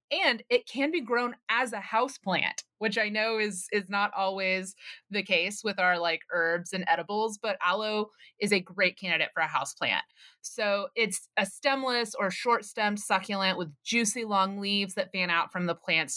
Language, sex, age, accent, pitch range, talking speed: English, female, 30-49, American, 180-225 Hz, 195 wpm